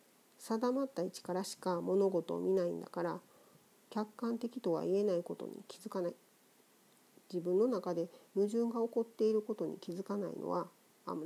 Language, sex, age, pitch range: Japanese, female, 40-59, 170-220 Hz